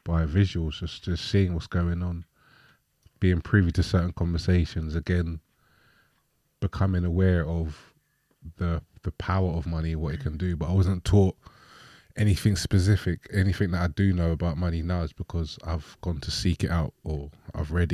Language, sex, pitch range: English, male, 85-95 Hz